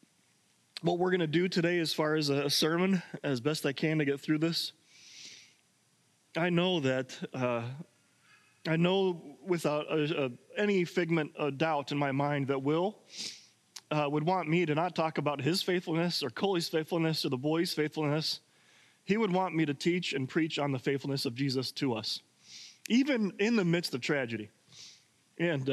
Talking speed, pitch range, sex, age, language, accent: 175 wpm, 130-160 Hz, male, 30-49, English, American